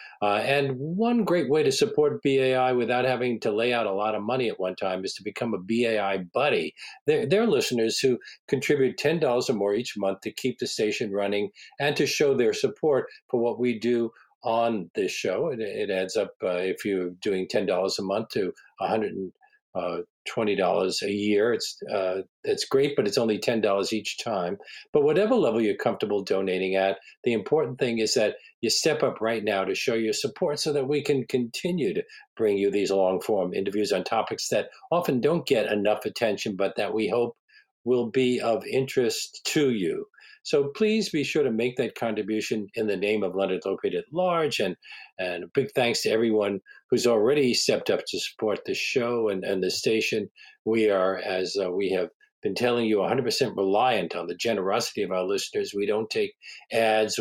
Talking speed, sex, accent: 195 wpm, male, American